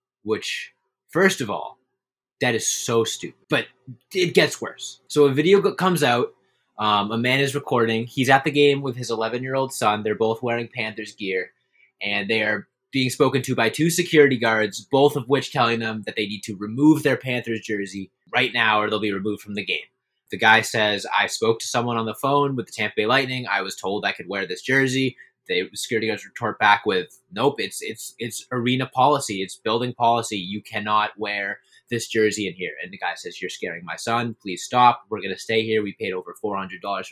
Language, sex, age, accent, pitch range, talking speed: English, male, 20-39, American, 110-170 Hz, 215 wpm